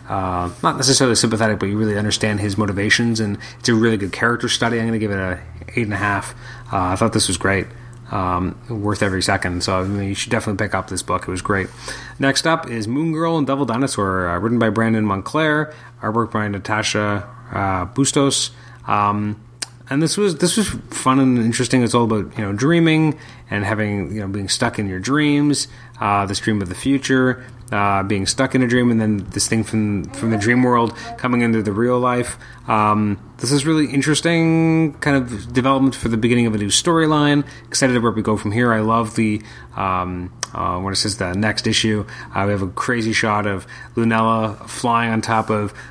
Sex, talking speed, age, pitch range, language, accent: male, 215 wpm, 30-49, 100-125 Hz, English, American